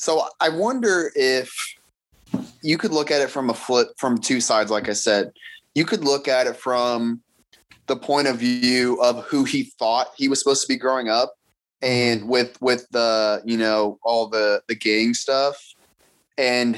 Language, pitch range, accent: English, 110-130 Hz, American